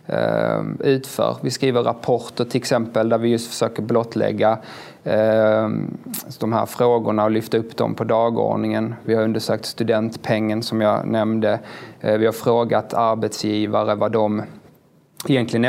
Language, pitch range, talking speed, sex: Swedish, 110-115 Hz, 140 wpm, male